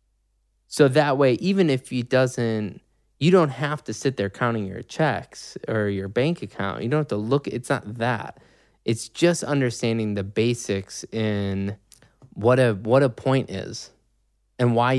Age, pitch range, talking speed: 20-39, 105-125 Hz, 170 wpm